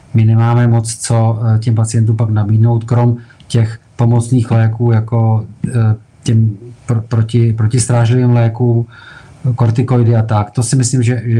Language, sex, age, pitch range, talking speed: Czech, male, 40-59, 115-125 Hz, 135 wpm